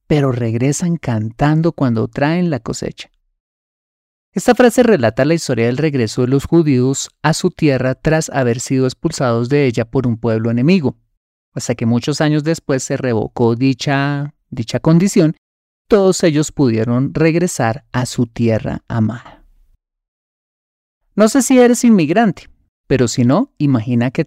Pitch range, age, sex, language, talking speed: 115-155 Hz, 30-49, male, Spanish, 145 wpm